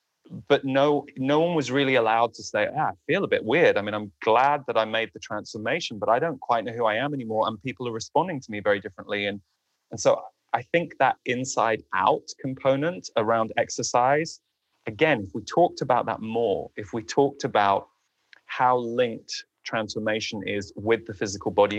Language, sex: English, male